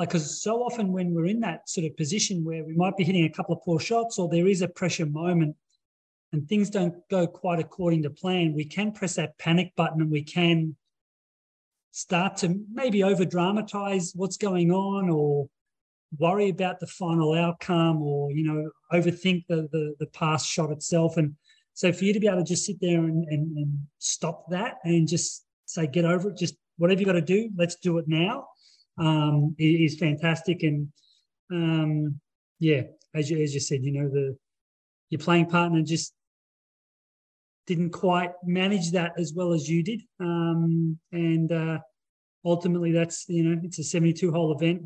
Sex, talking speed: male, 185 wpm